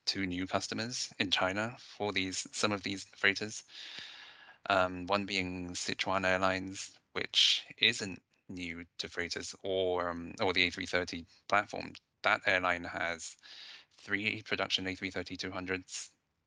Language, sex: English, male